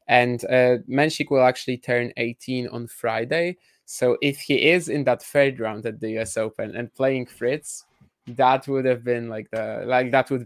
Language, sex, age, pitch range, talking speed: English, male, 20-39, 120-135 Hz, 190 wpm